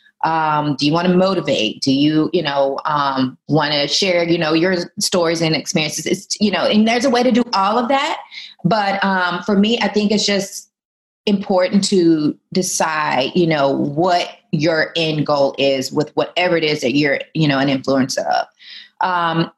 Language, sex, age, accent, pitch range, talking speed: English, female, 30-49, American, 150-195 Hz, 190 wpm